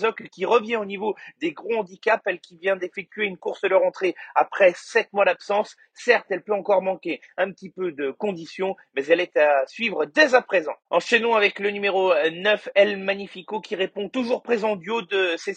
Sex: male